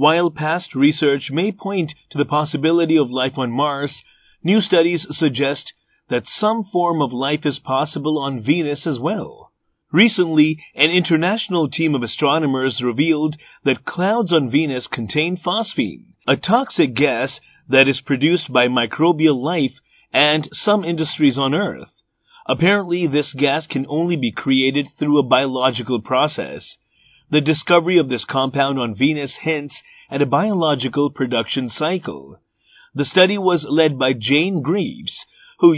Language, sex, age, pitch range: Japanese, male, 40-59, 135-170 Hz